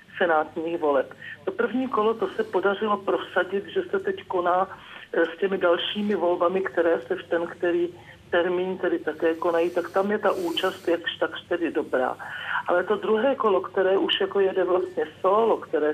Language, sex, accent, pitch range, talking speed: Czech, male, native, 185-230 Hz, 175 wpm